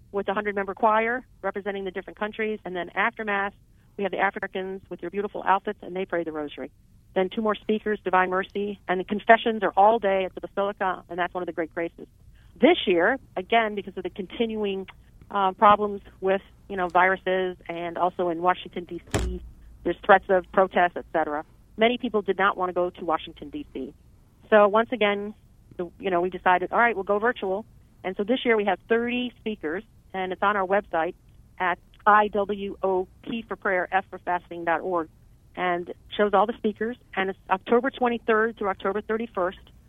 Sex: female